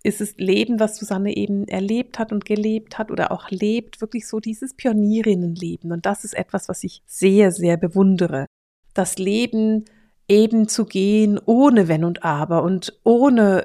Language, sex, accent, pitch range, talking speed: German, female, German, 195-235 Hz, 165 wpm